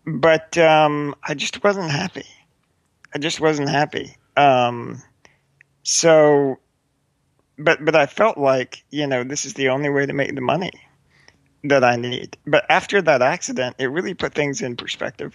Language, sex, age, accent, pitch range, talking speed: English, male, 40-59, American, 130-150 Hz, 160 wpm